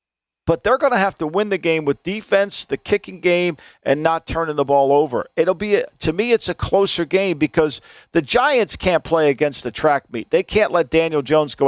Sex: male